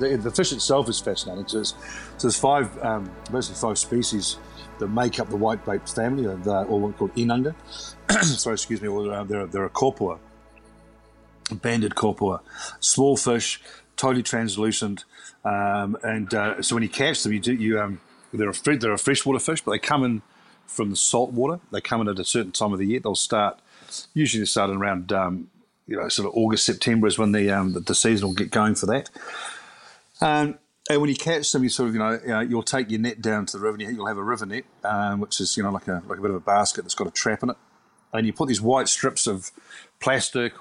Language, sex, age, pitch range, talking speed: English, male, 50-69, 105-125 Hz, 225 wpm